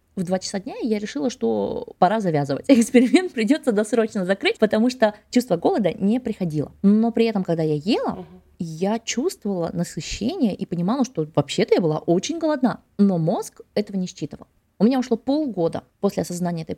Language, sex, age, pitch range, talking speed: Russian, female, 20-39, 165-230 Hz, 170 wpm